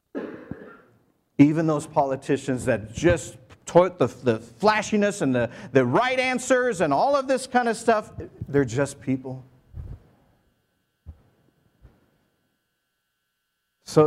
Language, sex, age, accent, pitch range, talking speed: English, male, 50-69, American, 95-150 Hz, 105 wpm